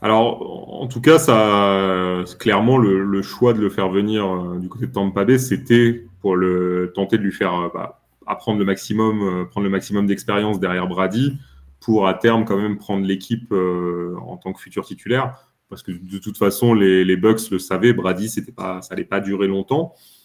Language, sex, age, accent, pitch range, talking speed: French, male, 30-49, French, 95-120 Hz, 200 wpm